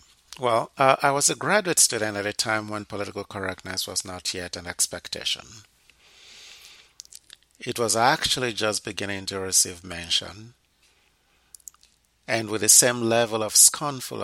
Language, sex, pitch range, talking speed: English, male, 95-120 Hz, 140 wpm